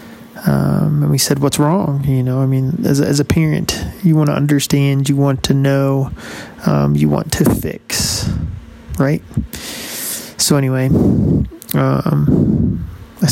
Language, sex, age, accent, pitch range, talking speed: English, male, 20-39, American, 135-155 Hz, 150 wpm